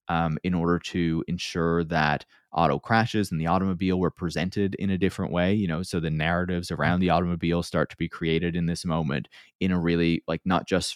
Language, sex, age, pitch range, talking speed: English, male, 20-39, 80-90 Hz, 210 wpm